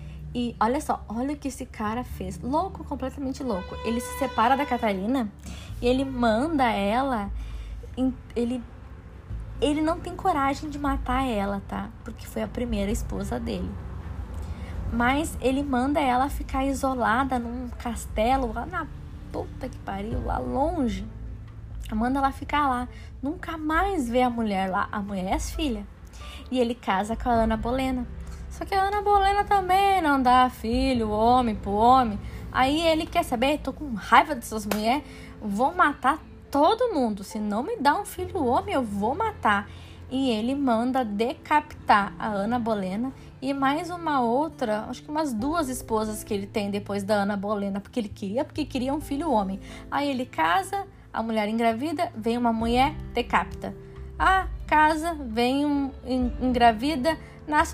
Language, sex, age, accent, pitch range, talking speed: Portuguese, female, 20-39, Brazilian, 220-285 Hz, 160 wpm